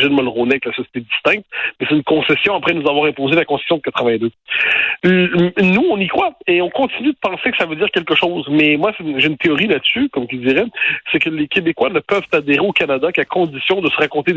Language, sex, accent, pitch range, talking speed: French, male, French, 135-170 Hz, 235 wpm